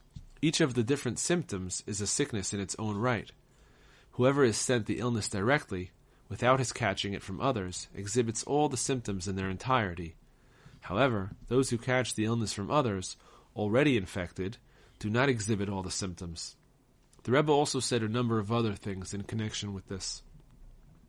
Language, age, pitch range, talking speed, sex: English, 30-49, 100-125 Hz, 170 wpm, male